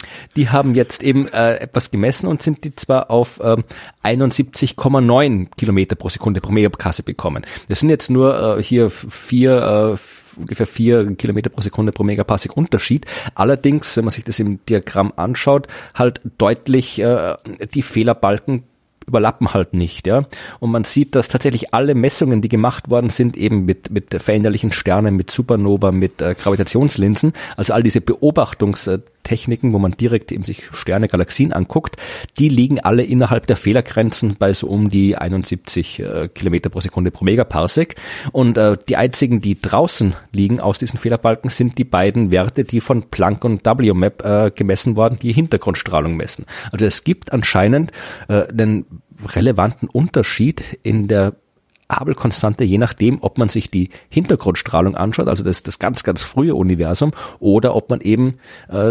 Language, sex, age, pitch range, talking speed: German, male, 30-49, 100-125 Hz, 165 wpm